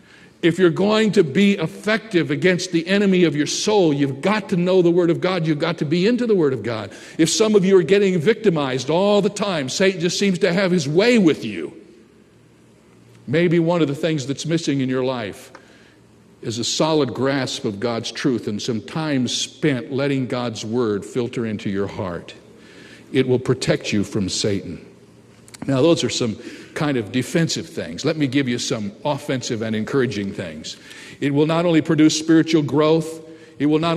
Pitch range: 130-170 Hz